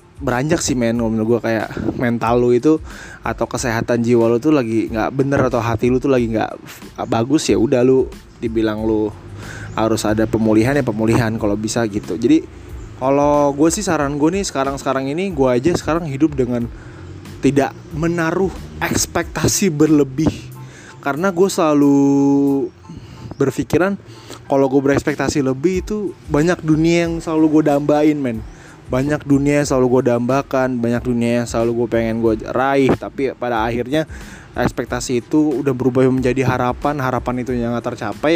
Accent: native